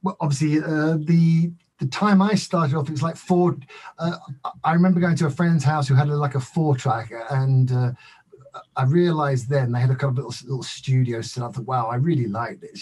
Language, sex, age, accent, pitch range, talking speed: English, male, 50-69, British, 125-155 Hz, 230 wpm